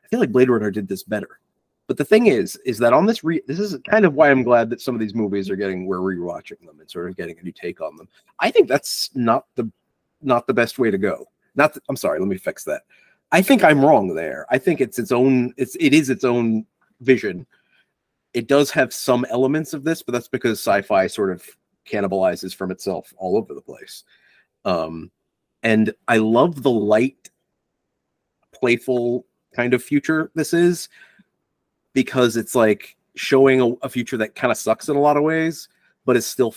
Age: 30-49